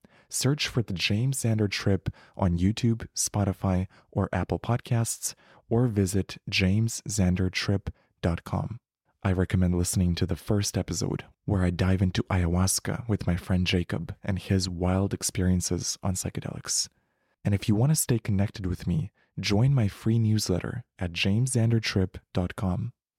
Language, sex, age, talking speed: English, male, 20-39, 135 wpm